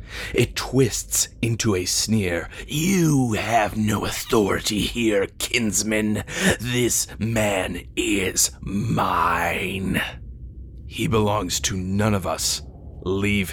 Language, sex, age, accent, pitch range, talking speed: English, male, 30-49, American, 85-105 Hz, 100 wpm